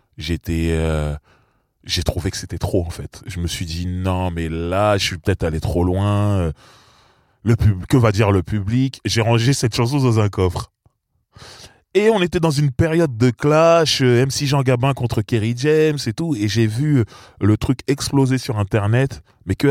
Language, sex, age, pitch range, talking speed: French, male, 20-39, 90-125 Hz, 190 wpm